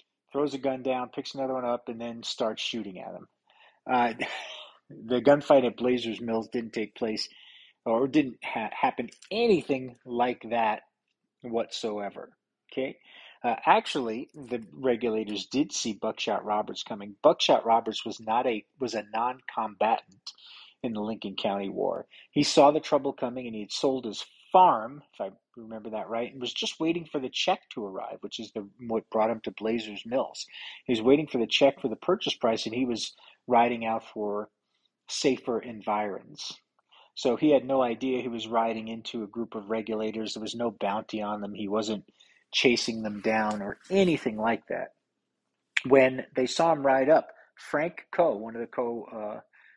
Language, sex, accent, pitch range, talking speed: English, male, American, 110-130 Hz, 180 wpm